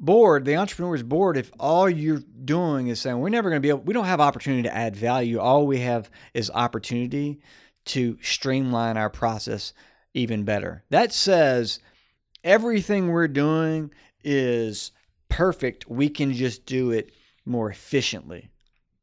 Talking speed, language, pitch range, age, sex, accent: 155 wpm, English, 120-170 Hz, 40-59, male, American